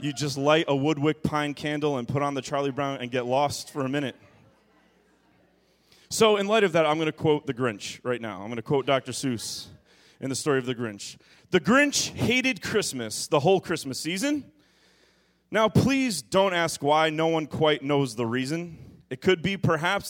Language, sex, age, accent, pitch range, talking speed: English, male, 30-49, American, 120-170 Hz, 200 wpm